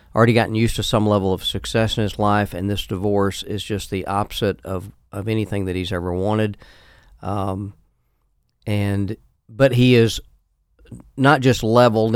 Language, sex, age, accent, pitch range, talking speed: English, male, 40-59, American, 100-115 Hz, 165 wpm